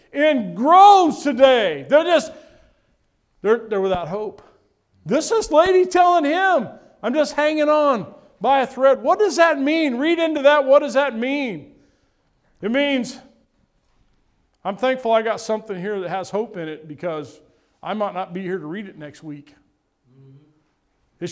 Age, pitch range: 50-69, 175-245 Hz